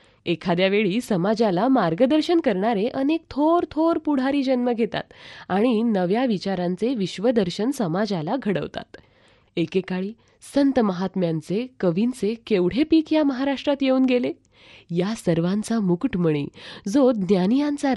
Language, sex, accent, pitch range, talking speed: Marathi, female, native, 180-260 Hz, 105 wpm